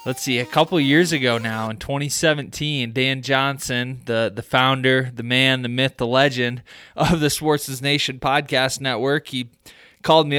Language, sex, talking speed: English, male, 170 wpm